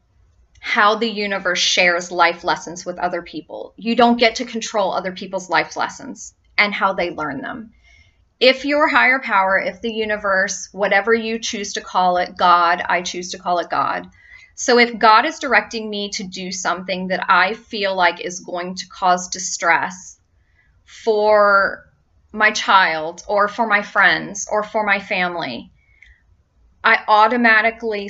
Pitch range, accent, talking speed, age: 175-220 Hz, American, 160 wpm, 30-49